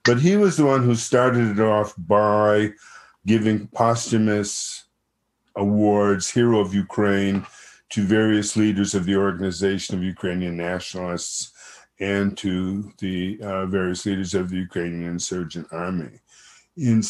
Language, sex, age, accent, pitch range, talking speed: English, male, 50-69, American, 95-115 Hz, 130 wpm